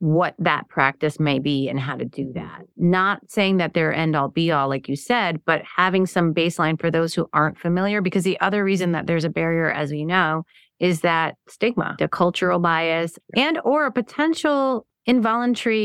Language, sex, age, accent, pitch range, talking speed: English, female, 30-49, American, 155-190 Hz, 190 wpm